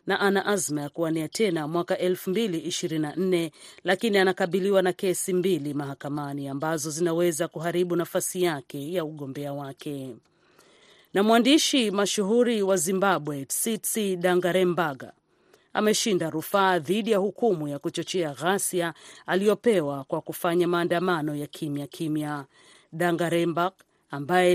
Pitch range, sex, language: 155-195 Hz, female, Swahili